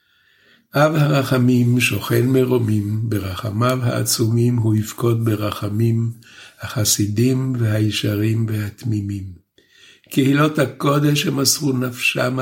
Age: 60-79